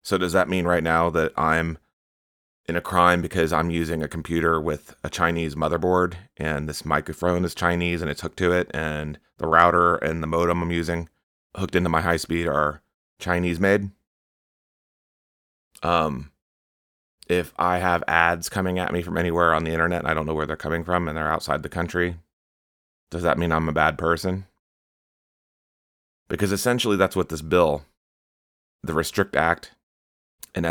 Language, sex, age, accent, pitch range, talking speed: English, male, 30-49, American, 75-90 Hz, 175 wpm